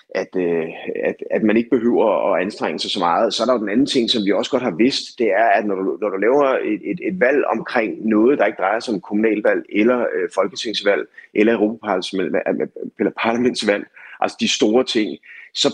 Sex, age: male, 30-49